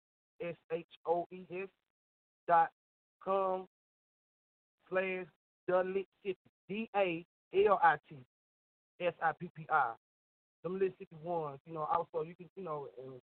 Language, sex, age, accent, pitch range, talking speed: English, male, 40-59, American, 145-180 Hz, 150 wpm